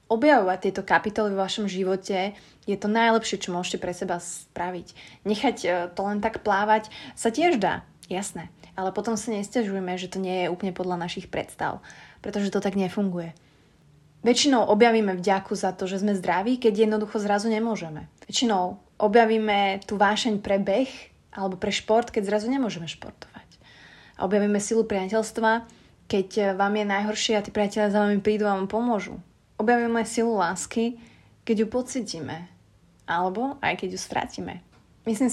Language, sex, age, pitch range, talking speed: Slovak, female, 20-39, 185-215 Hz, 160 wpm